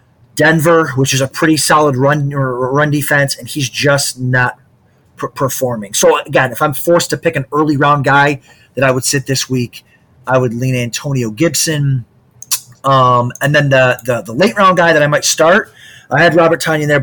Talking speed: 185 wpm